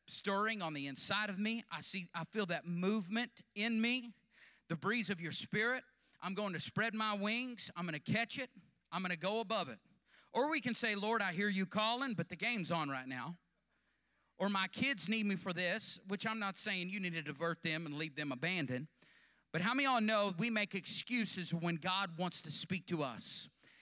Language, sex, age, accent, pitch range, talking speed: English, male, 40-59, American, 180-230 Hz, 220 wpm